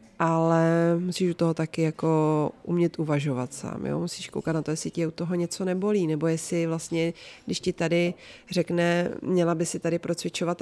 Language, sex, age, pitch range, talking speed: Czech, female, 30-49, 150-170 Hz, 185 wpm